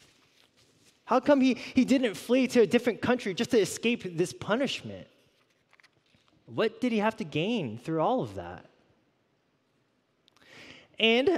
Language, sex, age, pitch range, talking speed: English, male, 20-39, 140-200 Hz, 135 wpm